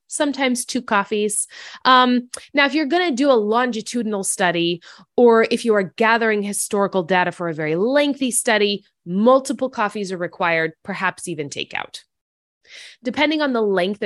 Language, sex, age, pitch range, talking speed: English, female, 20-39, 175-245 Hz, 150 wpm